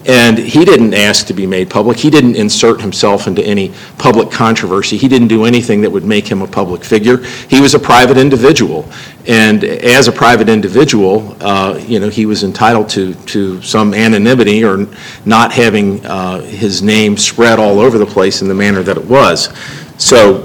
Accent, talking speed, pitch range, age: American, 190 wpm, 105-125 Hz, 50-69